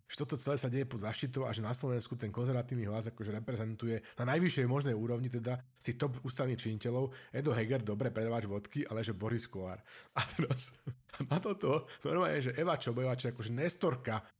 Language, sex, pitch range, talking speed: Slovak, male, 115-165 Hz, 185 wpm